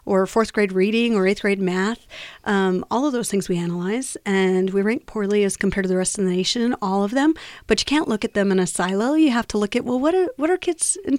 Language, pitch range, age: English, 200-240 Hz, 30-49